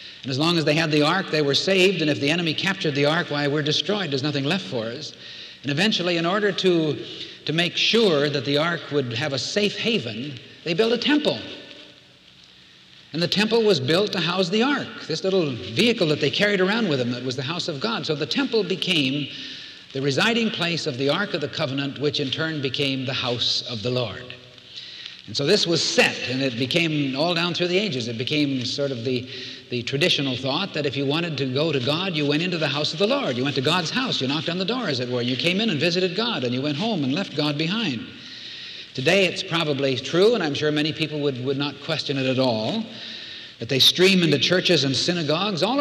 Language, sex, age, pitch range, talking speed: English, male, 60-79, 140-190 Hz, 235 wpm